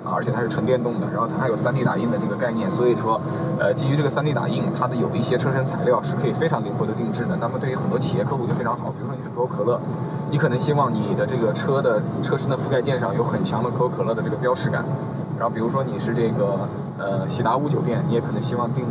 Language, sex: Chinese, male